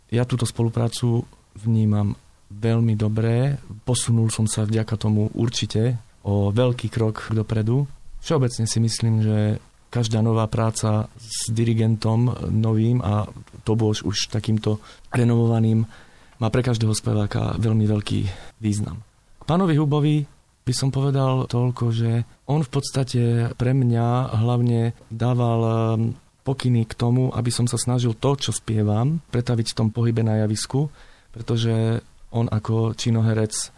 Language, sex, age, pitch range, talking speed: Slovak, male, 30-49, 110-120 Hz, 130 wpm